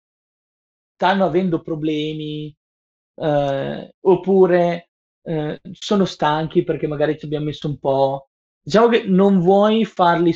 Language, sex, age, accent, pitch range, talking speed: Italian, male, 20-39, native, 140-180 Hz, 115 wpm